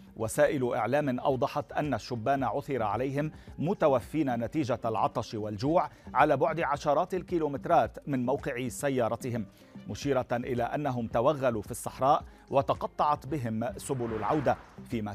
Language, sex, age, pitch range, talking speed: Arabic, male, 40-59, 115-145 Hz, 115 wpm